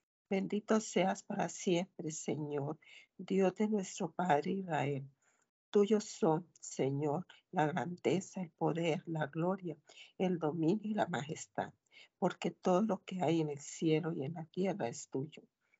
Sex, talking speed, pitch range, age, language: female, 145 wpm, 160-195 Hz, 60-79, Spanish